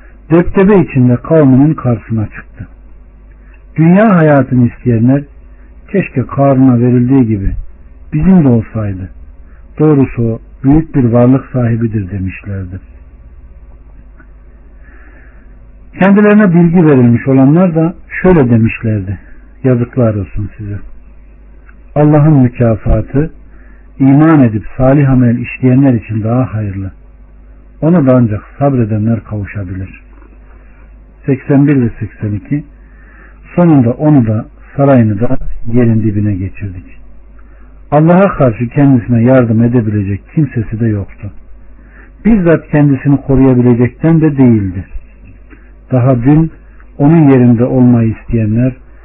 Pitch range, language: 105-140 Hz, Turkish